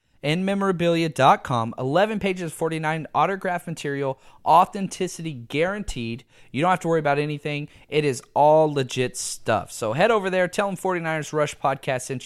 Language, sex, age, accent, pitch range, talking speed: English, male, 30-49, American, 125-170 Hz, 155 wpm